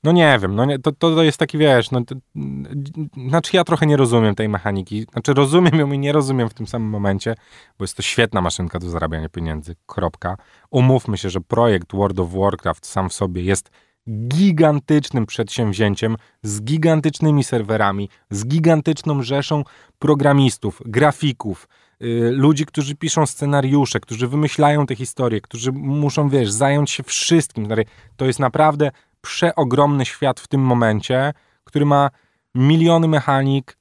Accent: native